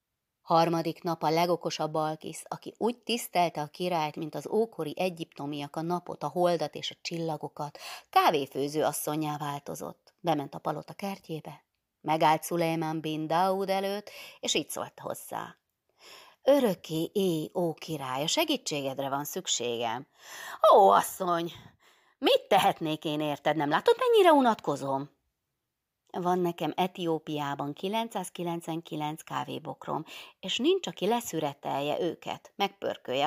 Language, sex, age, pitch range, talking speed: Hungarian, female, 30-49, 150-190 Hz, 120 wpm